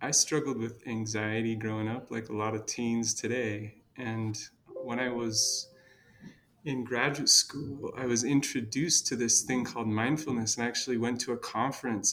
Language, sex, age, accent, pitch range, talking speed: English, male, 30-49, American, 115-155 Hz, 170 wpm